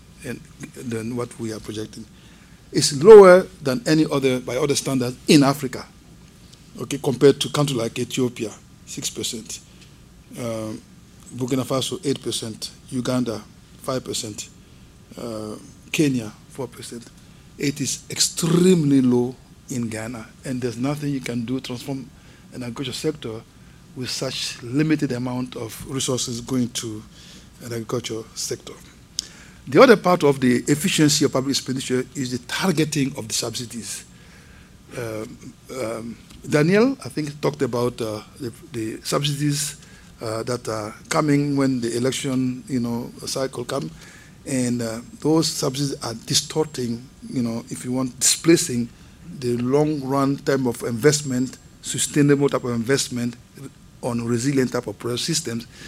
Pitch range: 120-145 Hz